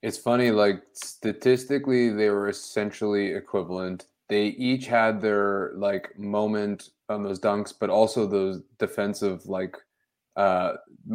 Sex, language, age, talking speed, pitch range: male, English, 20-39, 125 wpm, 100-115 Hz